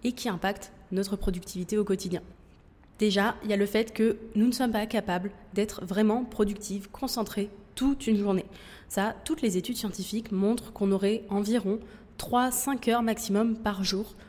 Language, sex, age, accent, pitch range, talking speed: French, female, 20-39, French, 190-225 Hz, 170 wpm